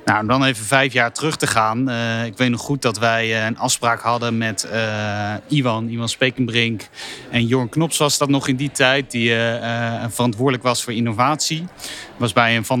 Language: Dutch